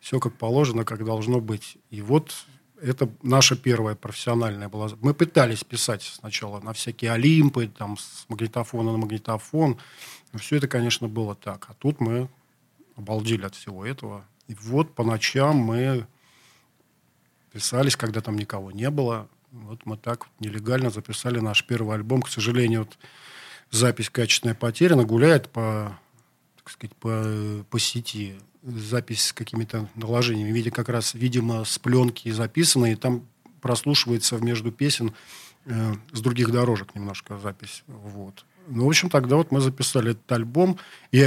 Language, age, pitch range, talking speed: Russian, 40-59, 110-130 Hz, 140 wpm